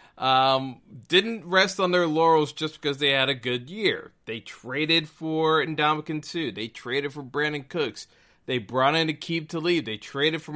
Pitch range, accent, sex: 130-165 Hz, American, male